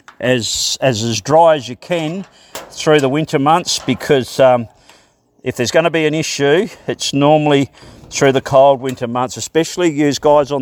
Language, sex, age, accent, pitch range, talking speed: English, male, 50-69, Australian, 125-150 Hz, 175 wpm